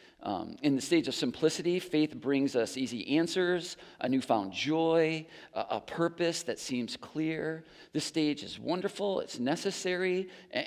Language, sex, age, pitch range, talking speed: English, male, 50-69, 135-175 Hz, 150 wpm